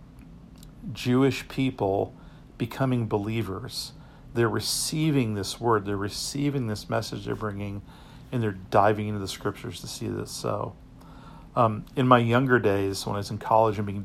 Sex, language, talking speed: male, English, 155 wpm